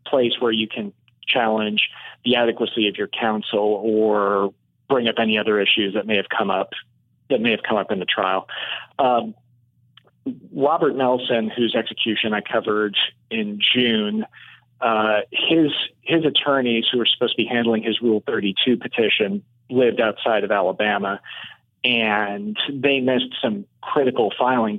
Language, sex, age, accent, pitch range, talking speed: English, male, 30-49, American, 110-125 Hz, 150 wpm